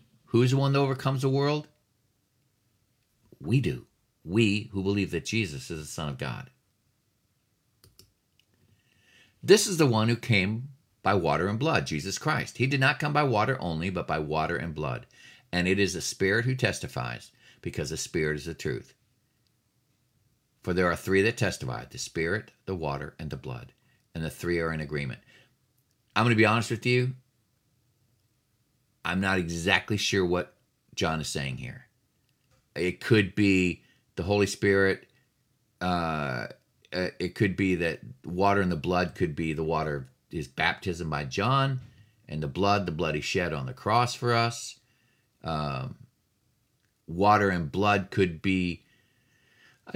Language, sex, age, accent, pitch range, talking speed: English, male, 50-69, American, 95-125 Hz, 160 wpm